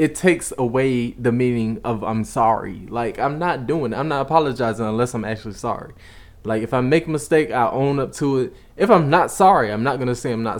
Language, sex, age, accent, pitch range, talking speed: English, male, 20-39, American, 105-125 Hz, 240 wpm